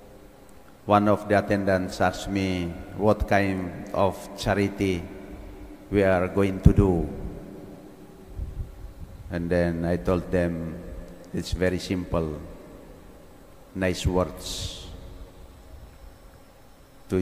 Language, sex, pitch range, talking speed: English, male, 90-100 Hz, 90 wpm